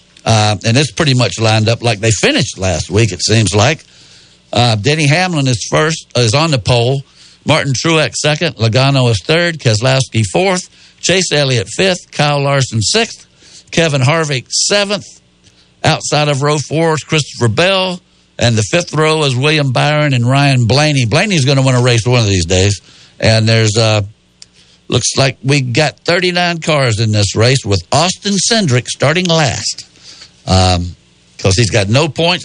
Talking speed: 170 wpm